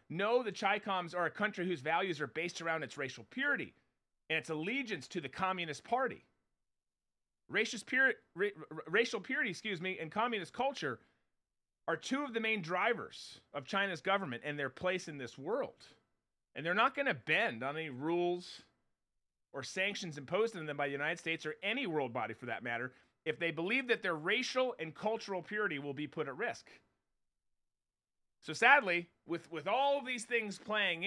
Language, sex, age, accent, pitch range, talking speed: English, male, 30-49, American, 160-220 Hz, 175 wpm